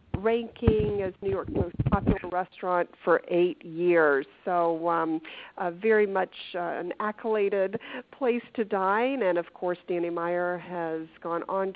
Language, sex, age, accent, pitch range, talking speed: English, female, 50-69, American, 180-245 Hz, 145 wpm